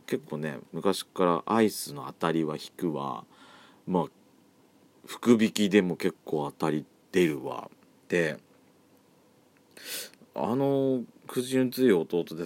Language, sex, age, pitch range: Japanese, male, 40-59, 85-135 Hz